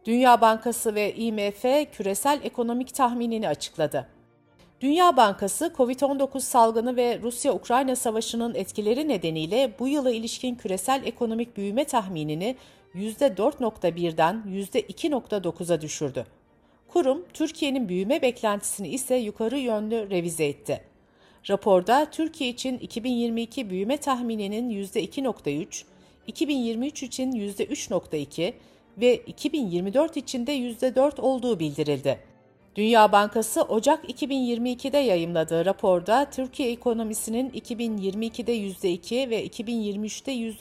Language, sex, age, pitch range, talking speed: Turkish, female, 50-69, 195-260 Hz, 95 wpm